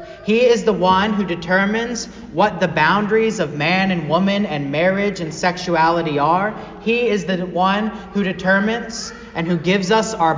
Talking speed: 170 wpm